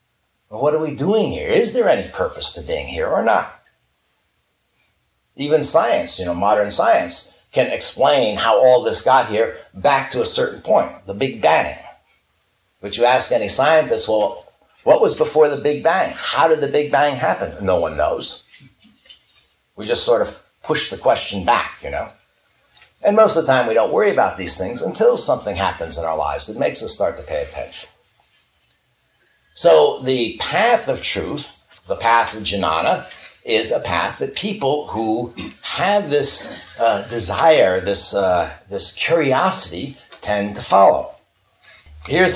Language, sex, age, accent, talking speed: English, male, 60-79, American, 165 wpm